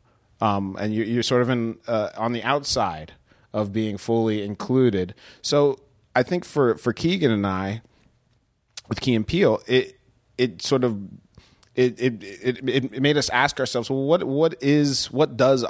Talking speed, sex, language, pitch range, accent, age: 170 wpm, male, English, 100-120 Hz, American, 30-49